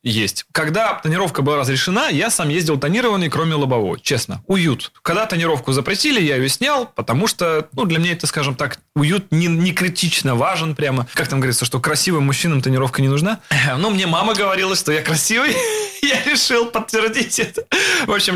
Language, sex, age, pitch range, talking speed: Russian, male, 20-39, 135-185 Hz, 185 wpm